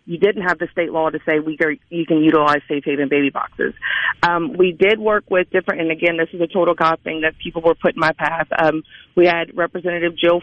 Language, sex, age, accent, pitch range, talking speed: English, female, 40-59, American, 160-185 Hz, 235 wpm